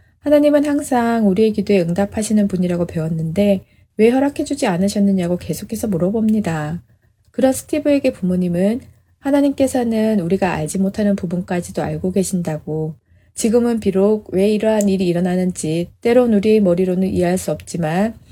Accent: native